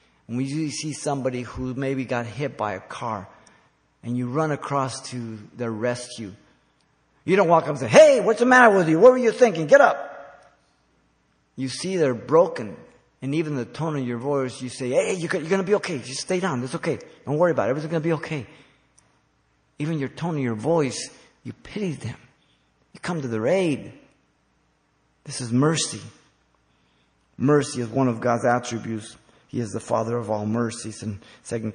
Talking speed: 190 wpm